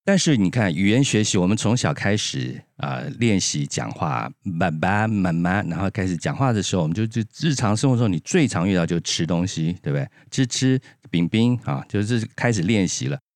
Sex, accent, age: male, native, 50-69